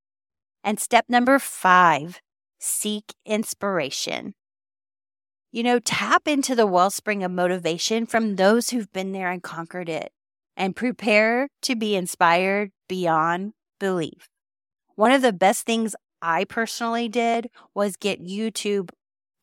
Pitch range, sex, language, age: 175-225 Hz, female, English, 30-49